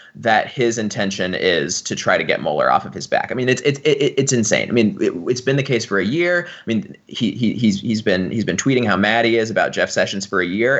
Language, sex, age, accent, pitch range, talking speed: English, male, 20-39, American, 110-145 Hz, 280 wpm